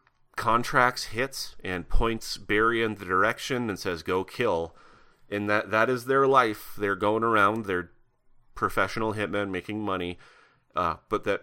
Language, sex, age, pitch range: English, male, 30-49, 95-120 Hz